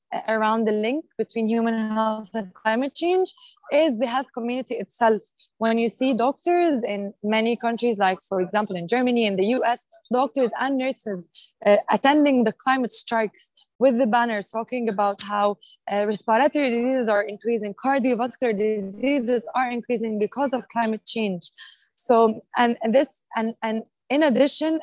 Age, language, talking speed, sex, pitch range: 20-39, English, 155 wpm, female, 215-260 Hz